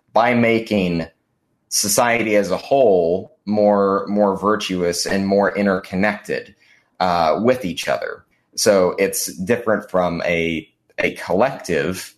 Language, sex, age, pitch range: English, male, 20-39, 90-100 Hz